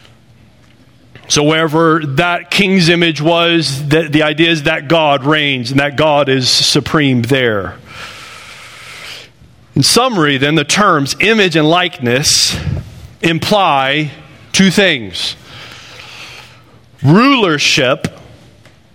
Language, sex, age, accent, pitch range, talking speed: English, male, 40-59, American, 120-160 Hz, 100 wpm